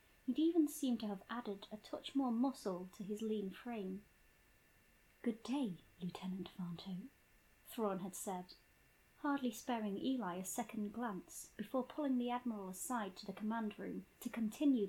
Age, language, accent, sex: 30-49, English, British, female